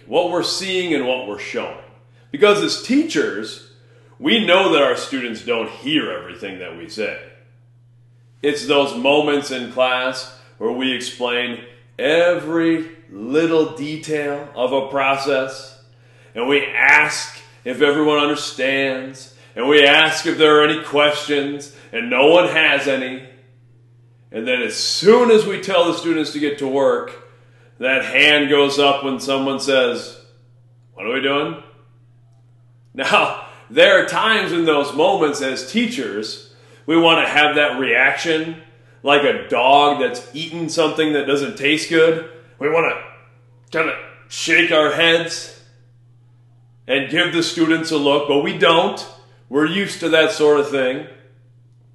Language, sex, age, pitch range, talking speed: English, male, 40-59, 120-160 Hz, 145 wpm